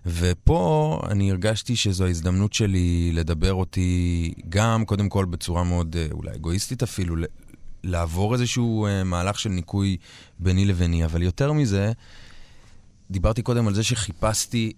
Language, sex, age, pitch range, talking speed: Hebrew, male, 30-49, 85-105 Hz, 125 wpm